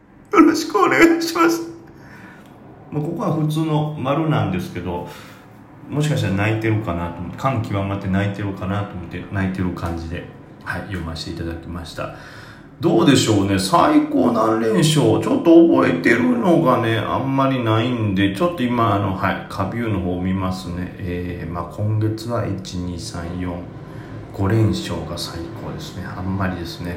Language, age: Japanese, 30-49